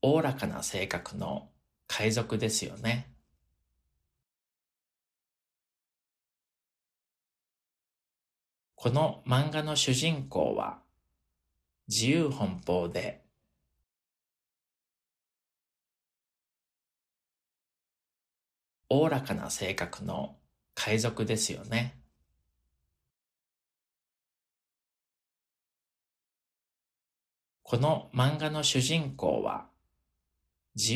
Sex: male